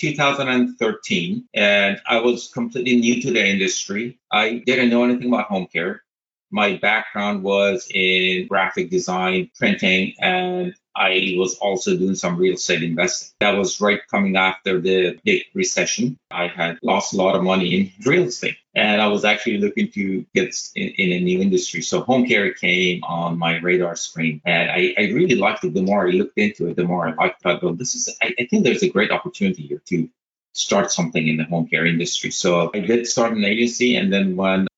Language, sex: English, male